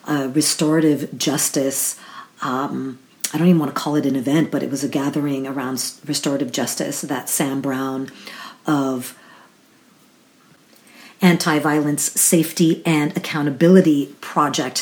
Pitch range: 150-175 Hz